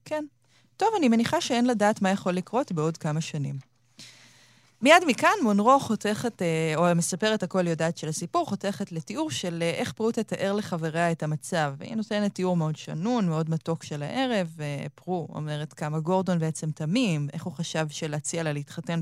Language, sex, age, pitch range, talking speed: Hebrew, female, 20-39, 155-210 Hz, 165 wpm